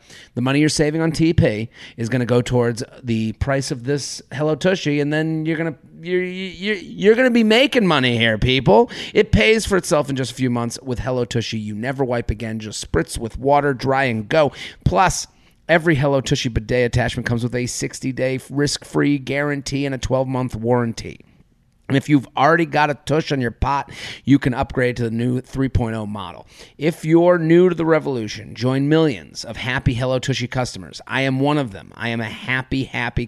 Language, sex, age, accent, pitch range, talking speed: English, male, 30-49, American, 120-155 Hz, 200 wpm